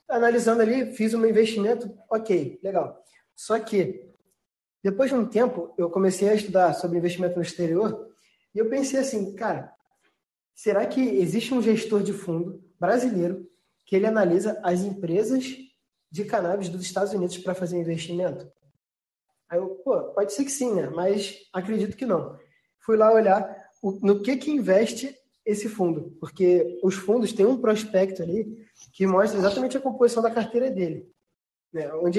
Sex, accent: male, Brazilian